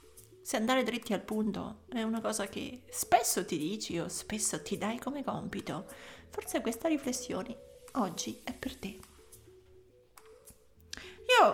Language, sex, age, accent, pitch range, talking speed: Italian, female, 30-49, native, 200-265 Hz, 135 wpm